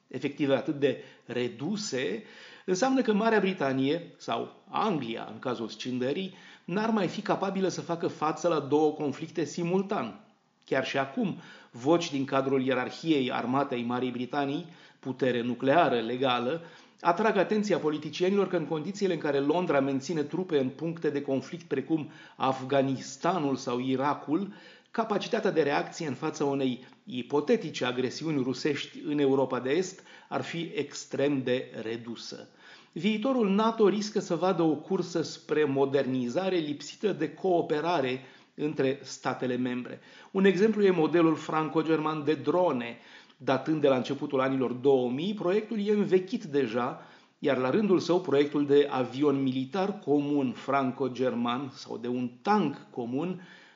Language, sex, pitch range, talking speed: Romanian, male, 130-175 Hz, 135 wpm